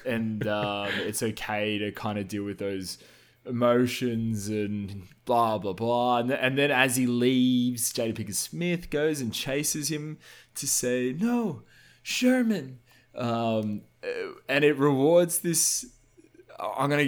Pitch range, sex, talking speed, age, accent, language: 105-130 Hz, male, 145 wpm, 20-39, Australian, English